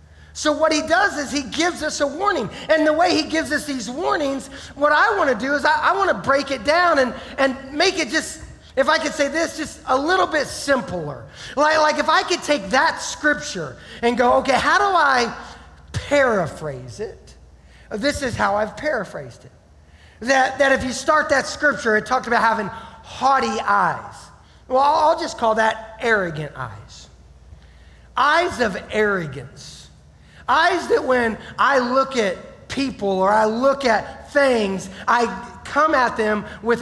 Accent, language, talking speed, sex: American, English, 175 wpm, male